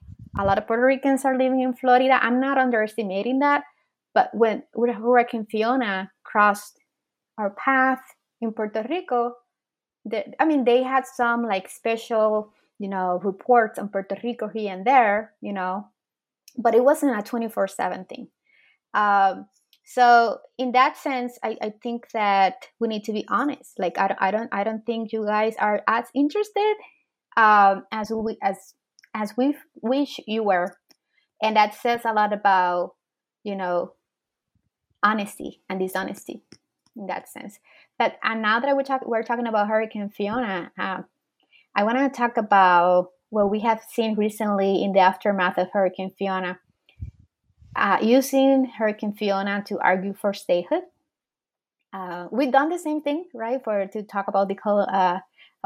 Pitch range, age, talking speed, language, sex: 195-245 Hz, 20-39, 155 wpm, Spanish, female